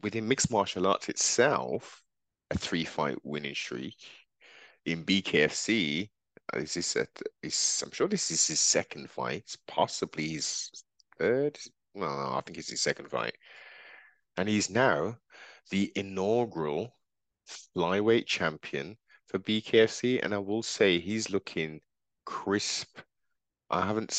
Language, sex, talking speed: English, male, 130 wpm